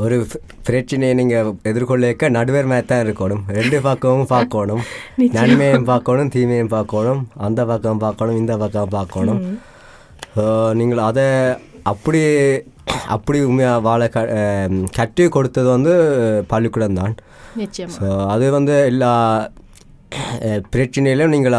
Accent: native